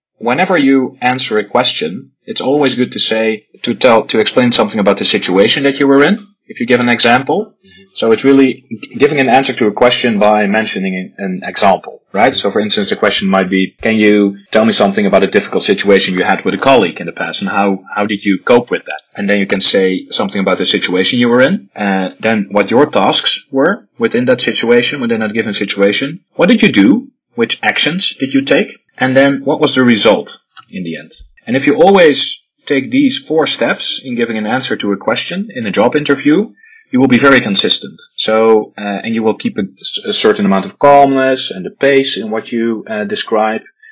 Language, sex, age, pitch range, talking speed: Slovak, male, 30-49, 105-145 Hz, 220 wpm